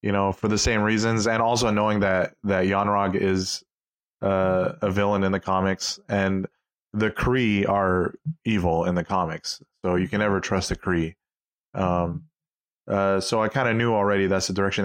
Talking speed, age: 180 wpm, 30-49